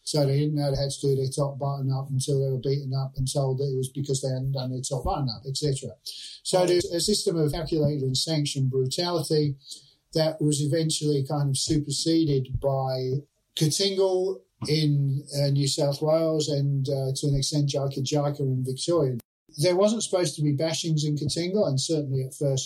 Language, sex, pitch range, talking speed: English, male, 135-150 Hz, 195 wpm